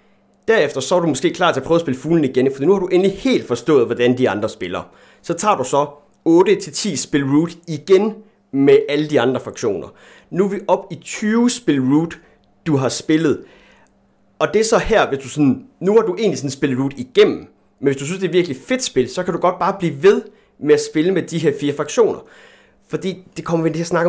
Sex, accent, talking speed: male, native, 235 wpm